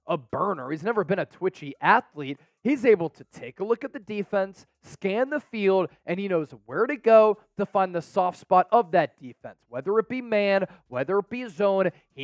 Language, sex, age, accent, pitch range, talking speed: English, male, 20-39, American, 165-220 Hz, 210 wpm